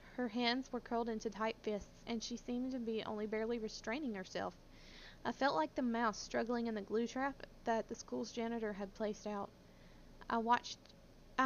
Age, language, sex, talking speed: 20-39, English, female, 185 wpm